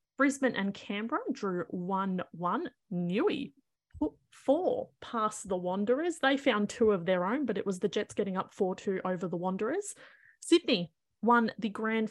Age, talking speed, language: 30-49, 160 wpm, English